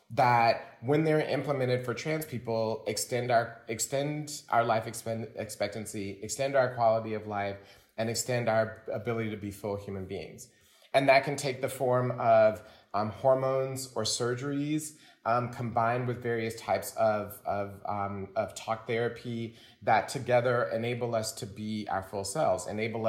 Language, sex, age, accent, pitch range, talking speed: English, male, 30-49, American, 110-130 Hz, 155 wpm